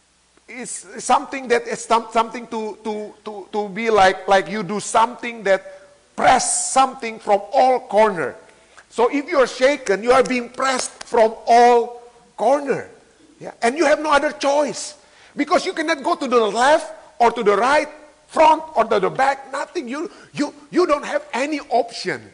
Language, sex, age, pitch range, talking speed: Indonesian, male, 50-69, 190-265 Hz, 170 wpm